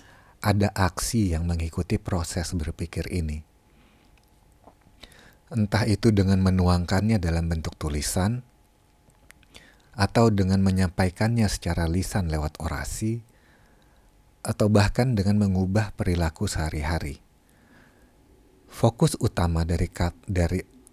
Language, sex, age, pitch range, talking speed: Indonesian, male, 40-59, 90-120 Hz, 90 wpm